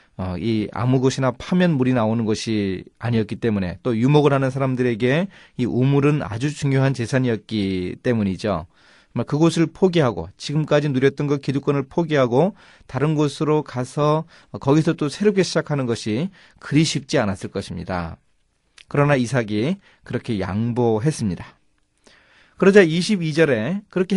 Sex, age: male, 30-49